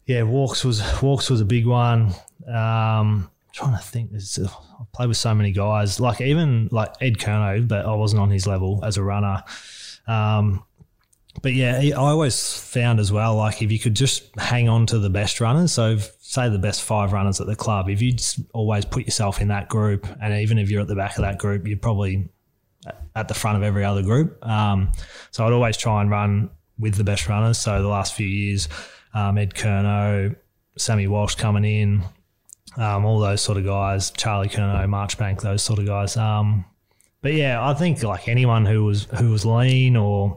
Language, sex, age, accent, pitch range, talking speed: English, male, 20-39, Australian, 100-115 Hz, 205 wpm